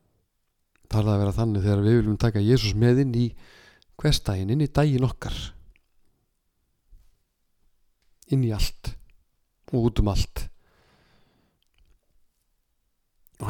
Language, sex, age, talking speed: English, male, 50-69, 110 wpm